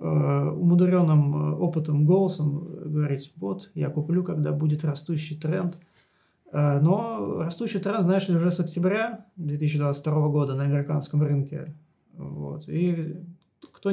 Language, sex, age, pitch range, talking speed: Turkish, male, 20-39, 155-190 Hz, 110 wpm